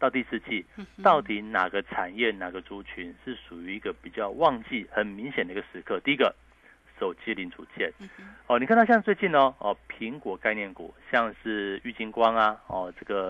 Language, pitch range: Chinese, 105-150 Hz